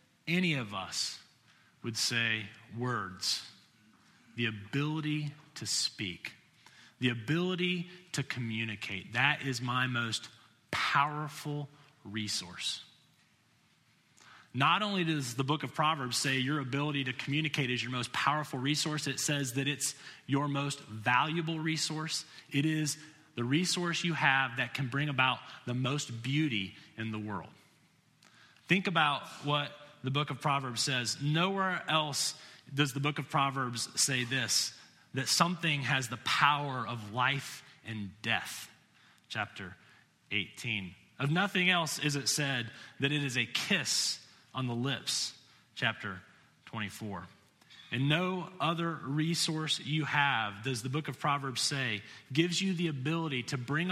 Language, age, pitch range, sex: English, 30-49, 120-155 Hz, male